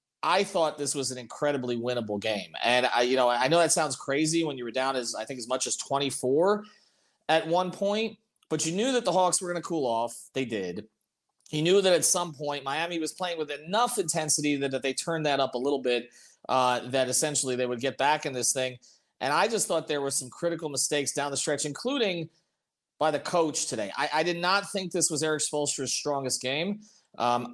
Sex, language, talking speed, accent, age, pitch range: male, English, 225 wpm, American, 30-49, 135-170 Hz